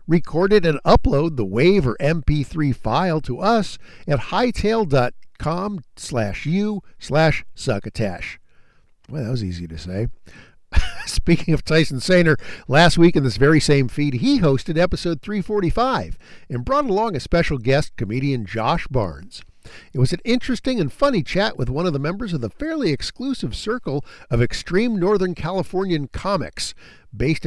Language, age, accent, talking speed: English, 50-69, American, 150 wpm